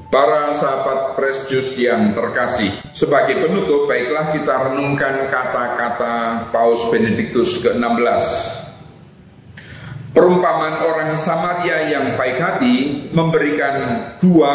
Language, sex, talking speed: Indonesian, male, 100 wpm